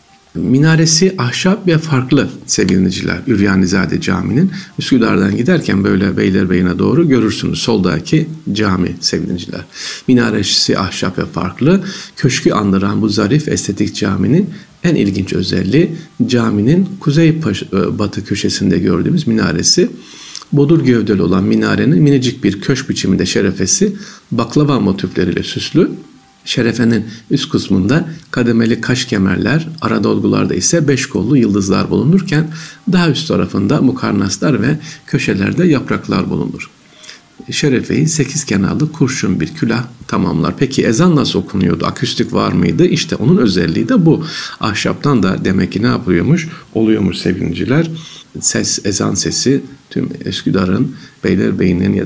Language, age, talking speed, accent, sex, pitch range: Turkish, 50-69, 120 wpm, native, male, 100-160 Hz